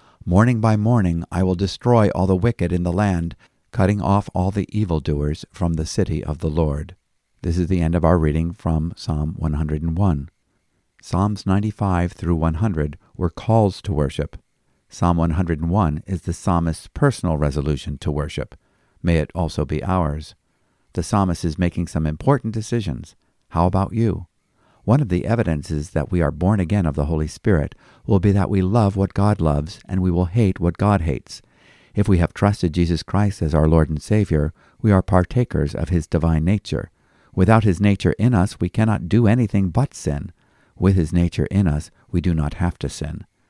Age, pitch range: 50-69, 80-100 Hz